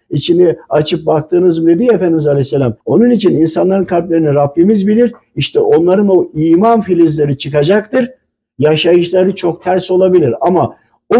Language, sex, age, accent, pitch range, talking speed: Turkish, male, 60-79, native, 150-205 Hz, 135 wpm